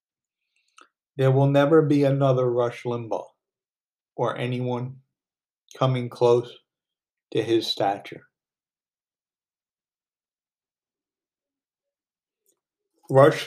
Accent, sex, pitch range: American, male, 125-140 Hz